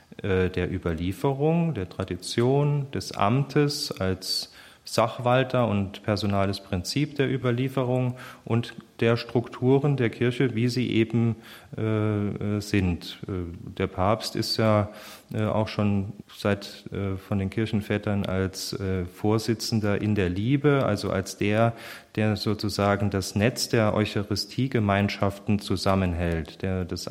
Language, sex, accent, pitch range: German, male, German, 100-125 Hz